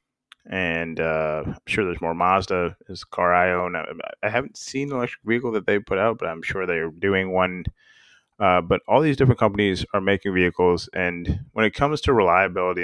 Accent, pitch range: American, 90-110 Hz